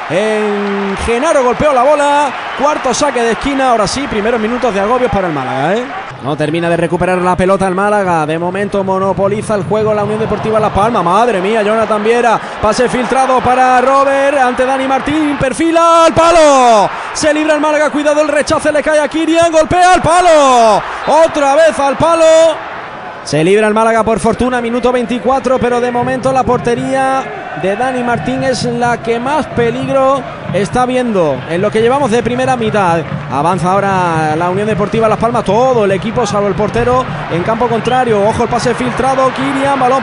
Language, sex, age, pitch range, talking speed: Spanish, male, 20-39, 215-270 Hz, 180 wpm